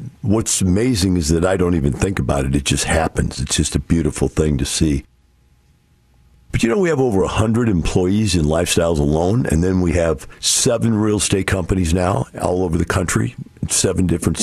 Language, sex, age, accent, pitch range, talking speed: English, male, 50-69, American, 80-120 Hz, 190 wpm